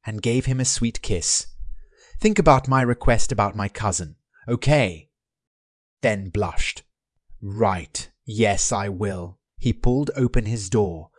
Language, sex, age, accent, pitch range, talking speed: English, male, 30-49, British, 90-130 Hz, 135 wpm